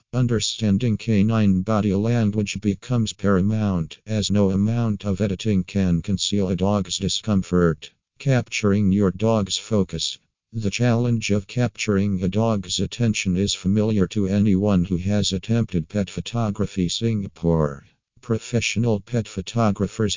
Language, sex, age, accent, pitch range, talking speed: English, male, 50-69, American, 95-110 Hz, 120 wpm